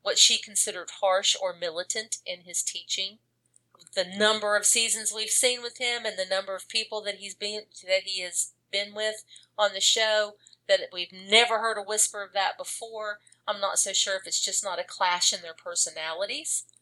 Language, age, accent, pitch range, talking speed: English, 40-59, American, 180-225 Hz, 195 wpm